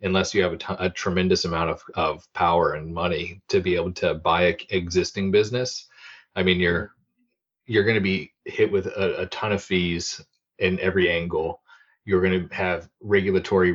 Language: English